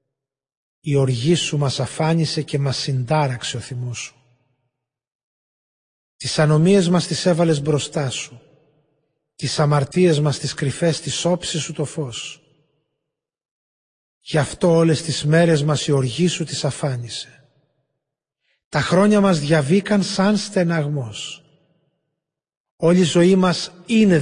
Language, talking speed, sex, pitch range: Greek, 125 wpm, male, 135-165 Hz